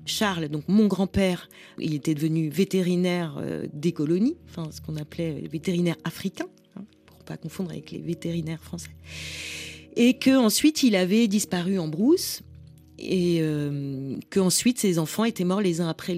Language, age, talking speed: French, 30-49, 150 wpm